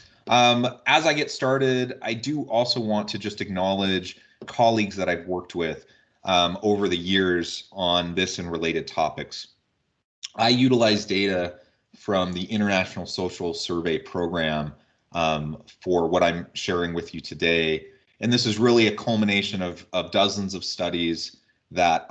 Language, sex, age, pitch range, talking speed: English, male, 30-49, 85-105 Hz, 150 wpm